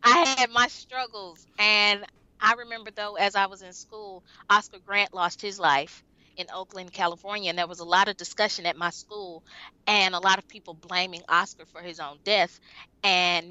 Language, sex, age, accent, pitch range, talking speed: English, female, 20-39, American, 175-210 Hz, 190 wpm